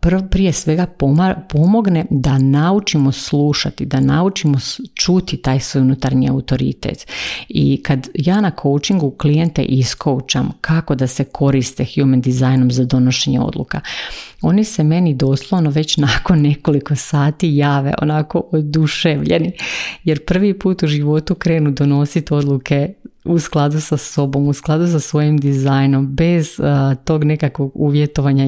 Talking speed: 130 wpm